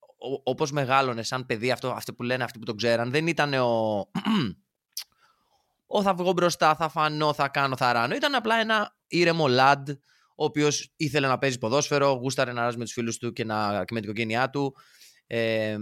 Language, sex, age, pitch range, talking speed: Greek, male, 20-39, 115-155 Hz, 180 wpm